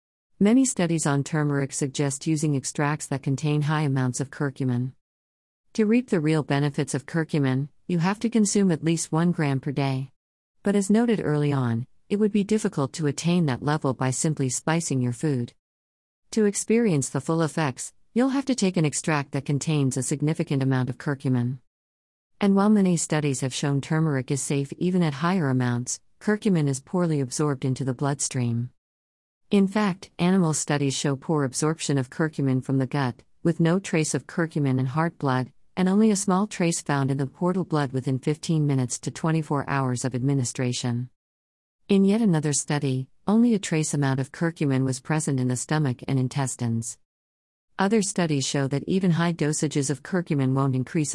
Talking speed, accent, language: 180 wpm, American, English